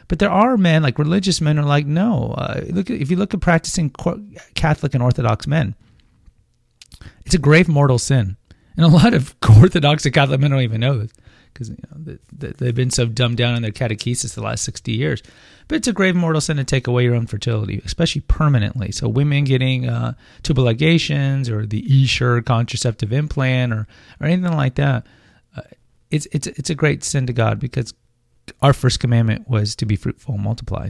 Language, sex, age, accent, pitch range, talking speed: English, male, 30-49, American, 120-150 Hz, 200 wpm